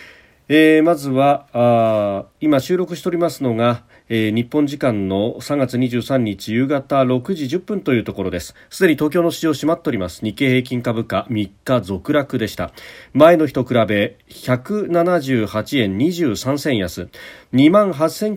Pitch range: 110-155 Hz